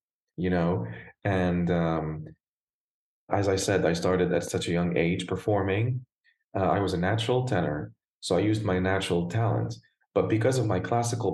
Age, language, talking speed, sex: 30-49, English, 170 wpm, male